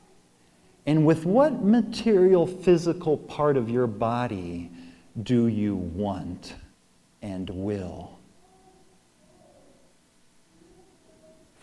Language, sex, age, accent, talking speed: English, male, 50-69, American, 75 wpm